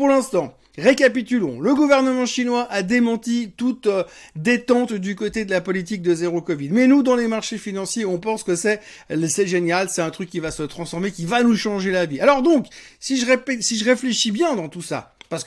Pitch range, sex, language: 175-250 Hz, male, French